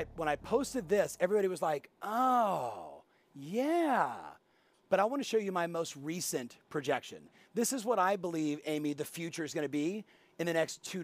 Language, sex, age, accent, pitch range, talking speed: English, male, 40-59, American, 170-225 Hz, 190 wpm